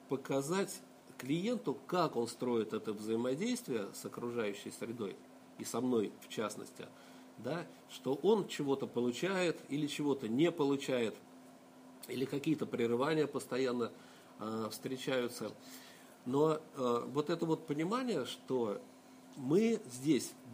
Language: Russian